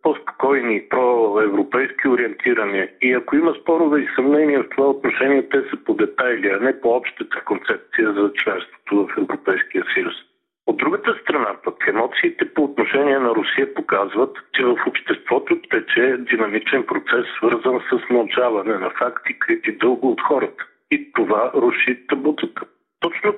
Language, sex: Bulgarian, male